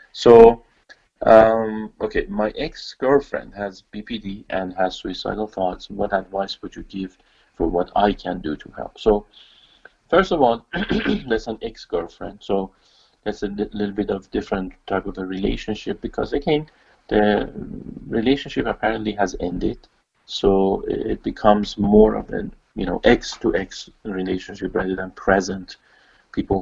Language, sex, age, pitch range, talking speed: English, male, 40-59, 95-105 Hz, 145 wpm